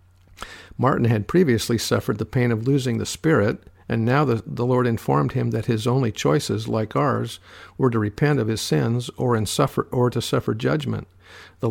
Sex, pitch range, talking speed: male, 110-135 Hz, 190 wpm